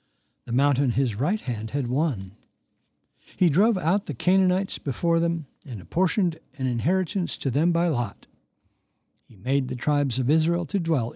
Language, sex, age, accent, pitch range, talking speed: English, male, 60-79, American, 125-170 Hz, 160 wpm